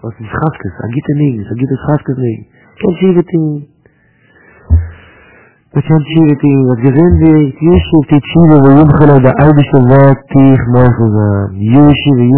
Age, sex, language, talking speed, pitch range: 50-69, male, English, 130 wpm, 115-145 Hz